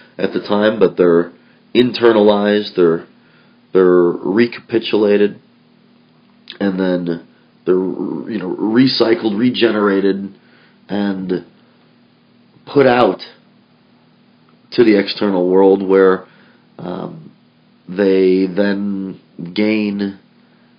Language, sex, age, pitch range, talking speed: English, male, 30-49, 95-115 Hz, 80 wpm